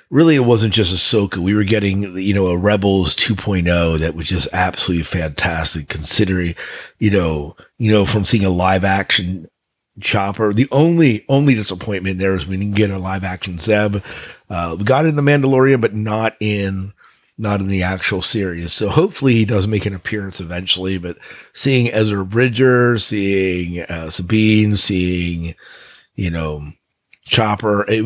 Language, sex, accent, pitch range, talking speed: English, male, American, 90-110 Hz, 165 wpm